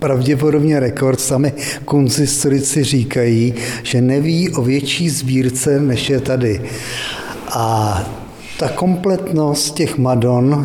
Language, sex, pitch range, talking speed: Czech, male, 120-140 Hz, 100 wpm